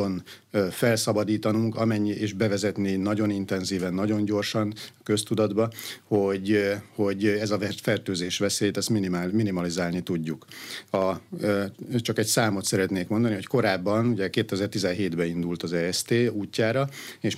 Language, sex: Hungarian, male